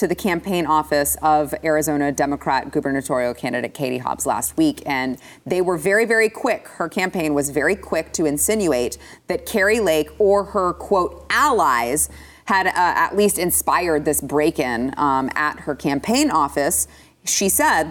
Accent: American